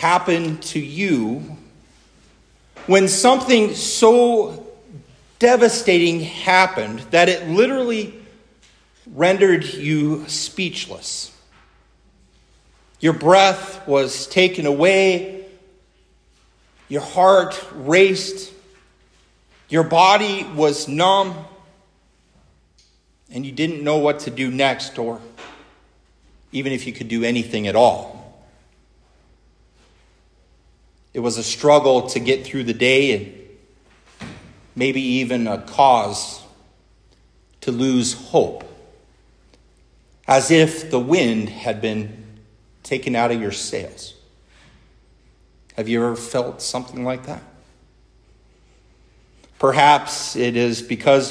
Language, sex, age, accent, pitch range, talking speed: English, male, 50-69, American, 115-180 Hz, 95 wpm